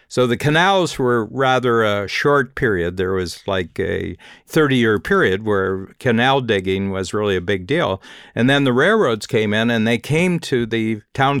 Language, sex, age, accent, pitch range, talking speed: English, male, 60-79, American, 100-125 Hz, 185 wpm